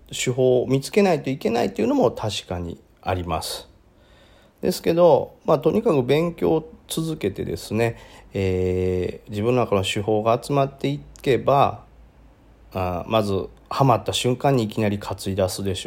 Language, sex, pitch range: Japanese, male, 100-145 Hz